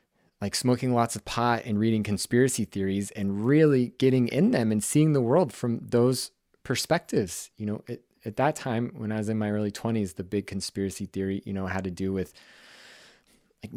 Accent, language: American, English